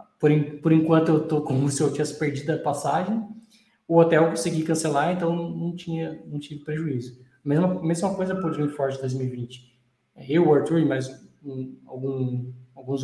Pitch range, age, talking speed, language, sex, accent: 135-170 Hz, 20-39, 160 wpm, Portuguese, male, Brazilian